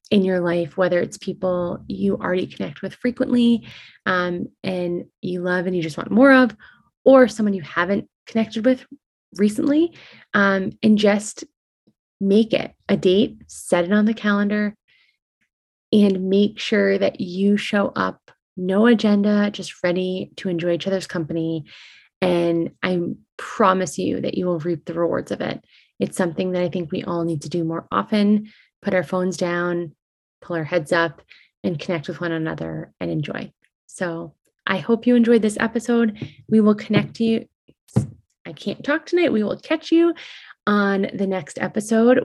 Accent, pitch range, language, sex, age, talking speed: American, 180-215 Hz, English, female, 20-39, 170 wpm